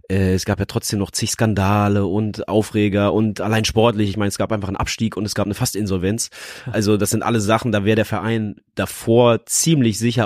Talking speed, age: 210 wpm, 20-39